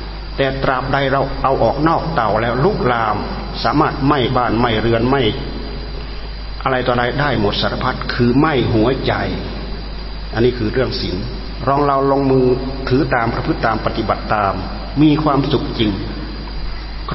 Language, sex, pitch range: Thai, male, 110-135 Hz